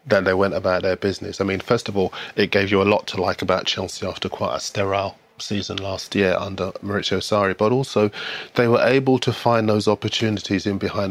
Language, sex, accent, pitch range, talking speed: English, male, British, 95-105 Hz, 220 wpm